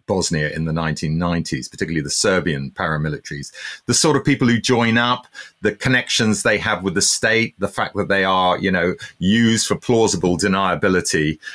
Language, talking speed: English, 170 wpm